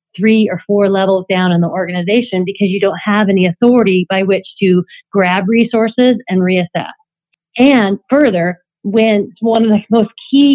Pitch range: 180-210 Hz